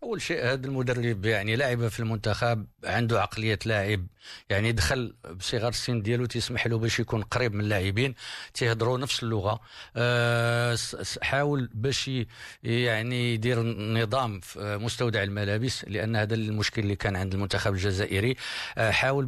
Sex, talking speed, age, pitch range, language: male, 135 wpm, 50-69, 105-125 Hz, Arabic